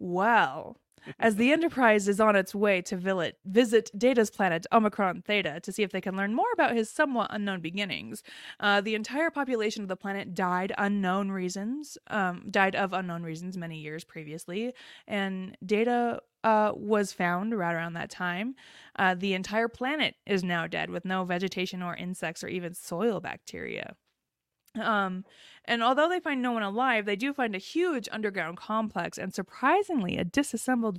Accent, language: American, English